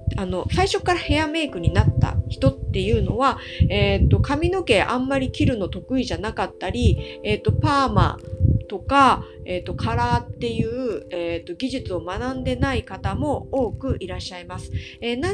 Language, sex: Japanese, female